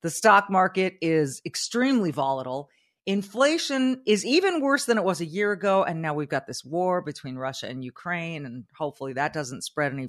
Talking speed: 190 wpm